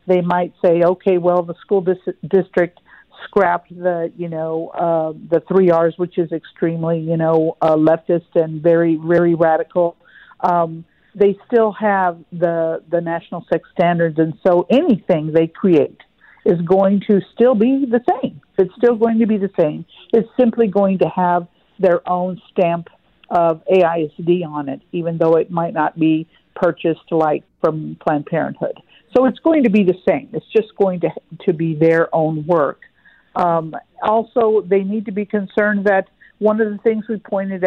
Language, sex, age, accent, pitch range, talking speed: English, female, 50-69, American, 170-205 Hz, 170 wpm